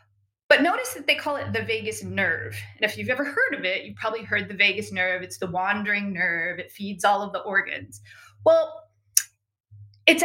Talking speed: 200 wpm